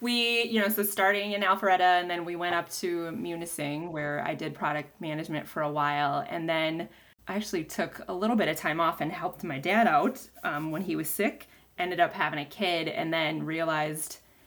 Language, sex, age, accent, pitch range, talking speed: English, female, 20-39, American, 155-220 Hz, 210 wpm